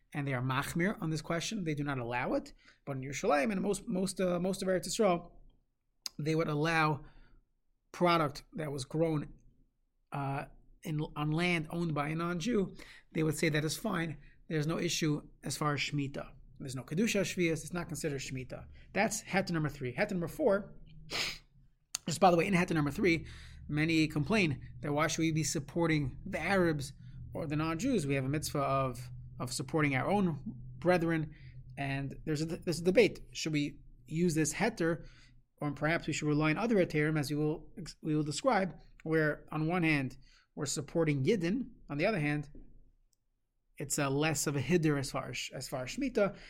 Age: 30-49